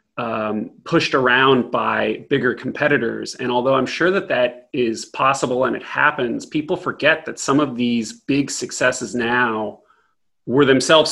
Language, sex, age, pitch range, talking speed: English, male, 30-49, 115-135 Hz, 150 wpm